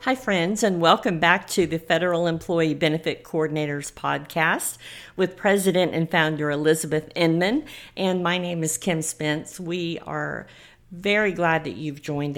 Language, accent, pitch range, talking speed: English, American, 155-190 Hz, 150 wpm